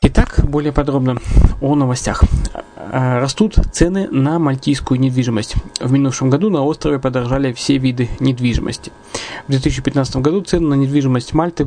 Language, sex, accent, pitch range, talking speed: Russian, male, native, 130-150 Hz, 135 wpm